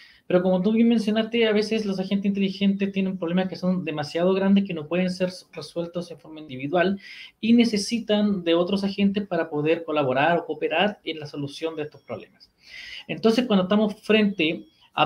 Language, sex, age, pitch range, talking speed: Spanish, male, 20-39, 160-205 Hz, 180 wpm